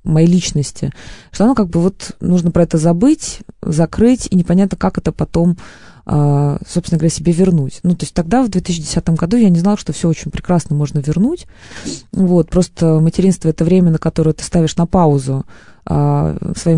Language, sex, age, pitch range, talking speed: Russian, female, 20-39, 160-190 Hz, 180 wpm